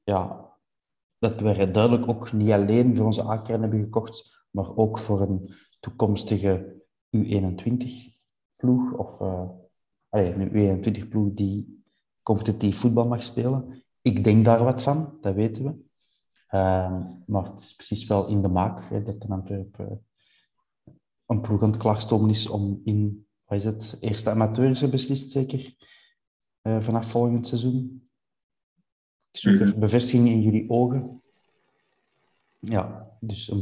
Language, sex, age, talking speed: Dutch, male, 30-49, 135 wpm